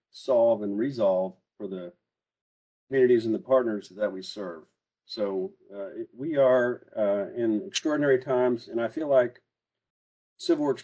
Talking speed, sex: 150 wpm, male